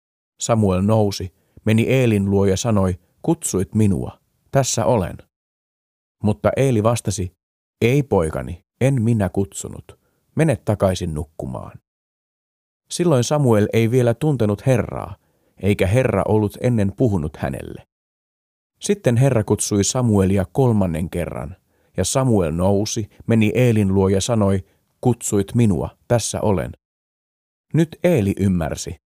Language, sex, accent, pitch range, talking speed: Finnish, male, native, 95-120 Hz, 115 wpm